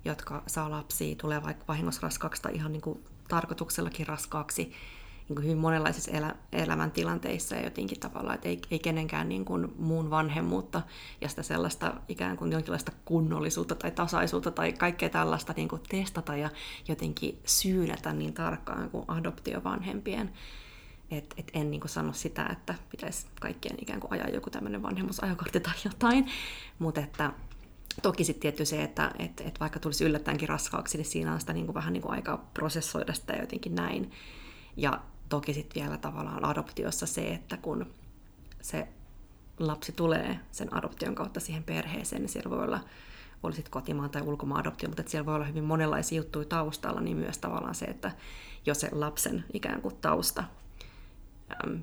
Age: 20-39